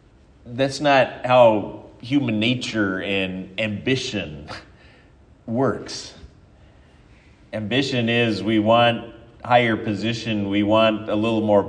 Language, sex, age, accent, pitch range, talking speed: English, male, 30-49, American, 105-135 Hz, 100 wpm